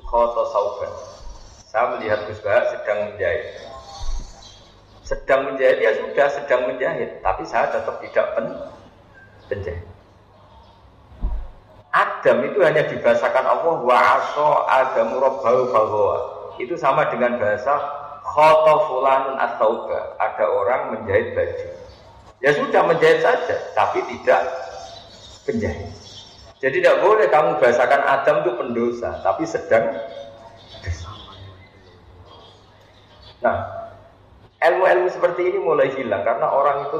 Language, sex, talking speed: Indonesian, male, 95 wpm